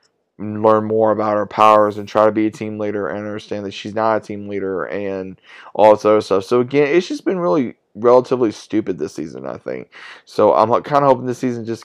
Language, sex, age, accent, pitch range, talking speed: English, male, 20-39, American, 105-120 Hz, 230 wpm